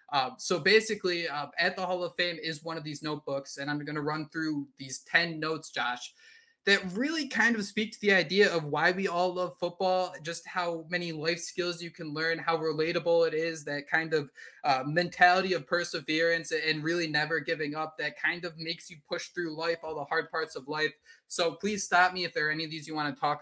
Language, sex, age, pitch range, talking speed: English, male, 20-39, 150-180 Hz, 230 wpm